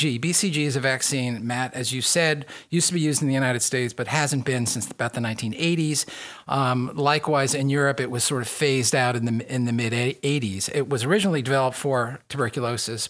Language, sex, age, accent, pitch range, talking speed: English, male, 50-69, American, 125-150 Hz, 200 wpm